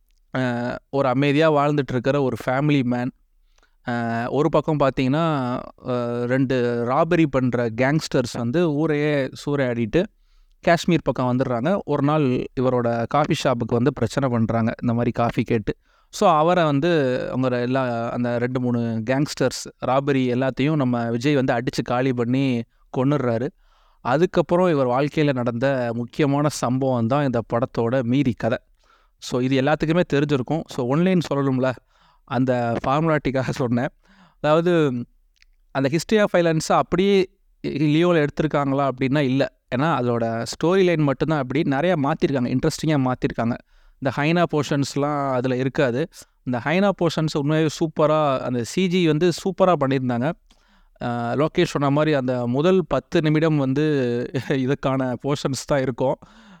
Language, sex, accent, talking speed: Tamil, male, native, 125 wpm